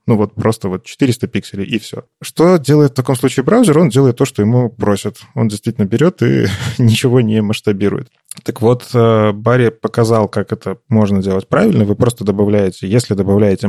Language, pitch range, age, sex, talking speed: Russian, 105-125 Hz, 20-39, male, 180 wpm